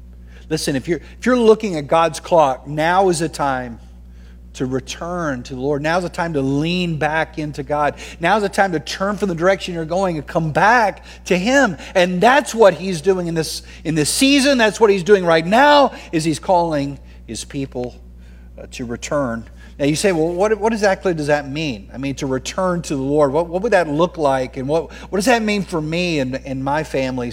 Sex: male